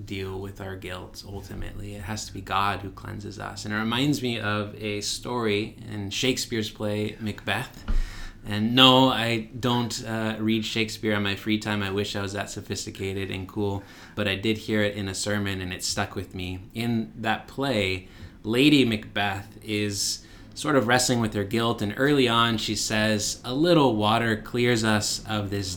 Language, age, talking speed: English, 20-39, 185 wpm